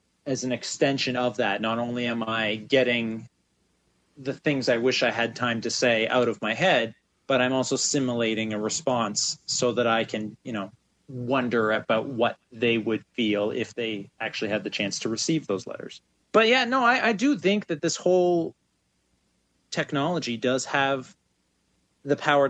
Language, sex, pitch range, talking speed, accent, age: English, male, 115-145 Hz, 175 wpm, American, 30-49